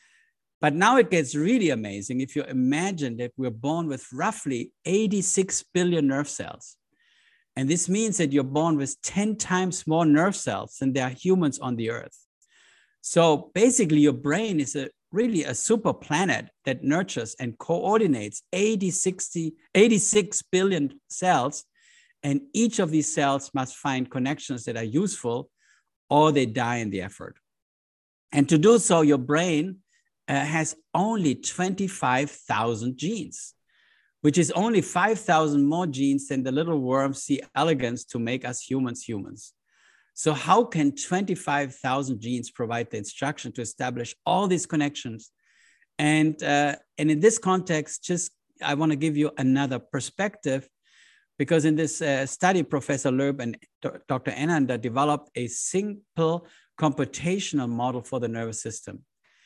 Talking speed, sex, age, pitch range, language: 150 wpm, male, 50-69, 130-180 Hz, English